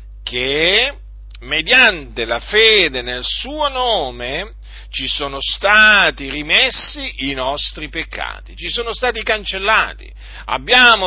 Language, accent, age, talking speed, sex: Italian, native, 50-69, 105 wpm, male